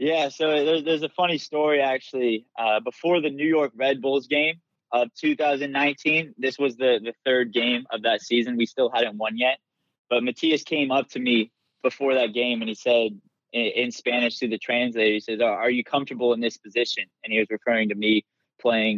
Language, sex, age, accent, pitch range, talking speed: English, male, 20-39, American, 115-140 Hz, 205 wpm